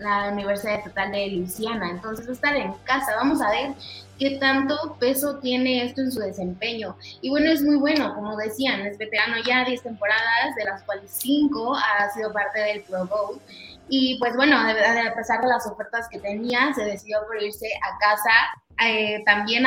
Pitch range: 205-255 Hz